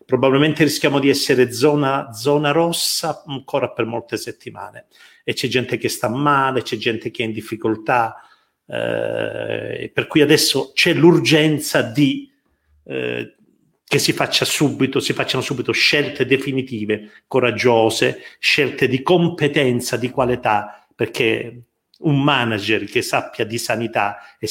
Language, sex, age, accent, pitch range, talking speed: Italian, male, 50-69, native, 120-150 Hz, 130 wpm